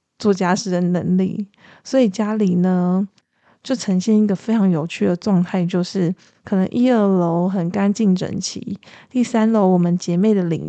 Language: Chinese